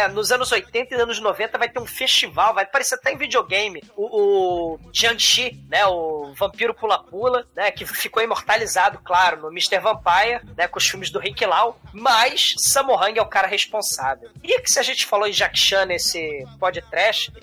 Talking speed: 190 wpm